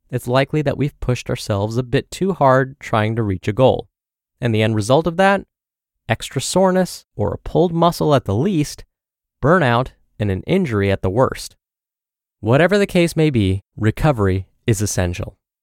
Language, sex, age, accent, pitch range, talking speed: English, male, 20-39, American, 105-145 Hz, 175 wpm